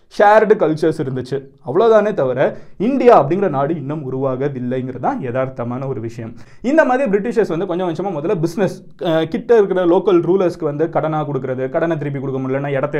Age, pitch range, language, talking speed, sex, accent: 20-39, 155-240 Hz, Tamil, 145 wpm, male, native